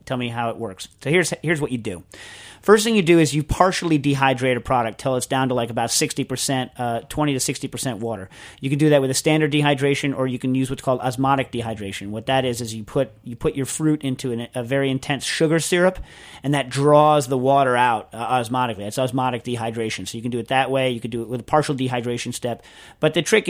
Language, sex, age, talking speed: English, male, 40-59, 245 wpm